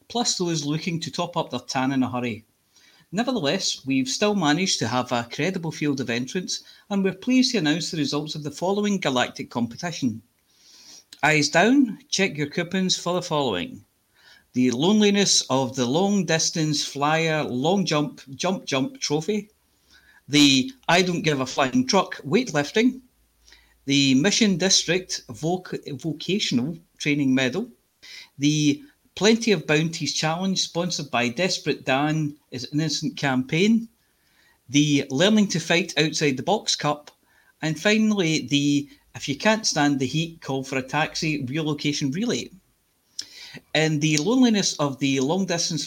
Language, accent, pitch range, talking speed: English, British, 140-190 Hz, 145 wpm